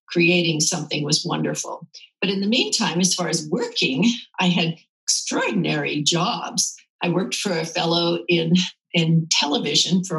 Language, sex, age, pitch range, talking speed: English, female, 50-69, 170-195 Hz, 145 wpm